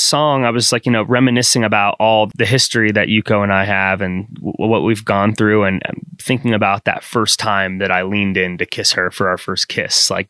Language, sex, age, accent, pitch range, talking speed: English, male, 20-39, American, 105-140 Hz, 235 wpm